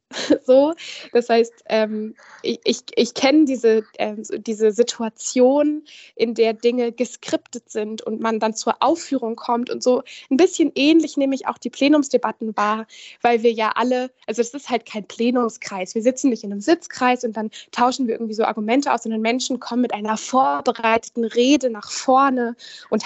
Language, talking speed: German, 175 wpm